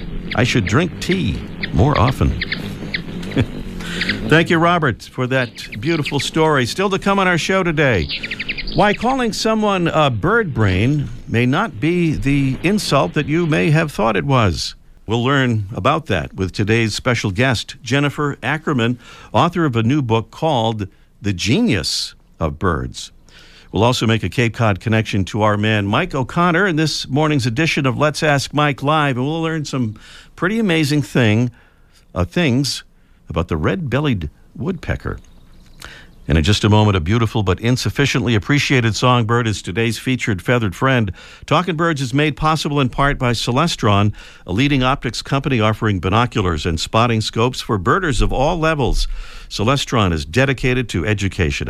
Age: 50-69